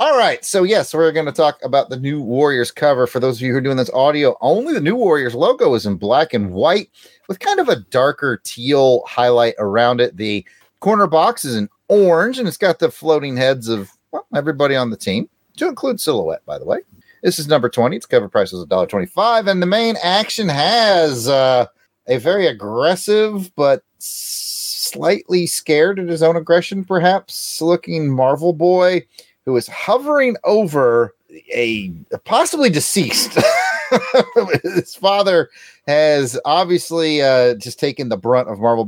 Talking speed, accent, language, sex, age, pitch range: 170 wpm, American, English, male, 30-49, 115-170 Hz